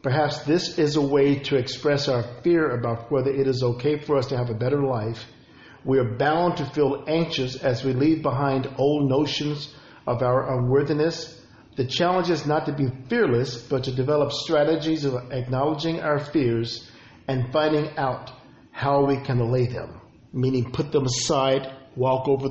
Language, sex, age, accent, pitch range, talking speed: English, male, 50-69, American, 125-150 Hz, 175 wpm